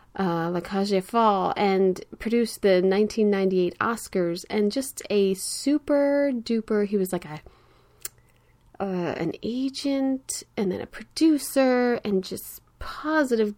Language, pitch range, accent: English, 185-225 Hz, American